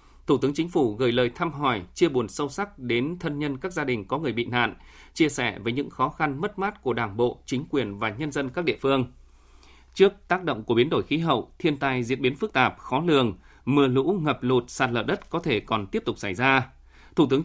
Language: Vietnamese